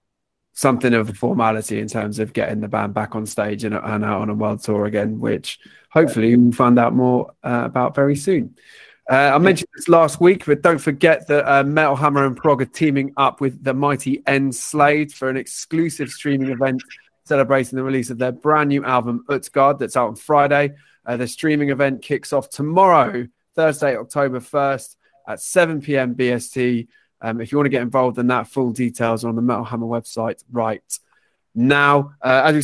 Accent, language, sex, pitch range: British, English, male, 120-145 Hz